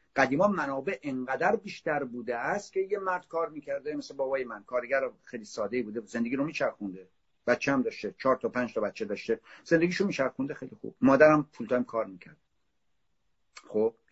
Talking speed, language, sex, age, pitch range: 175 wpm, Persian, male, 50-69, 125-190 Hz